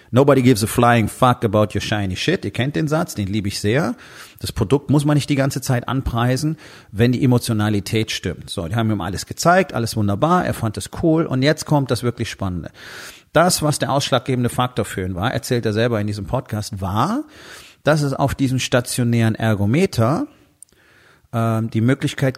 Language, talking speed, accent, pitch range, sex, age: German, 195 wpm, German, 110-135 Hz, male, 40-59